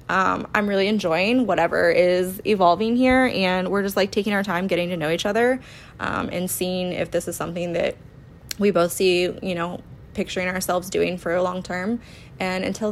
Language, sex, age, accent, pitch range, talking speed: English, female, 20-39, American, 180-220 Hz, 195 wpm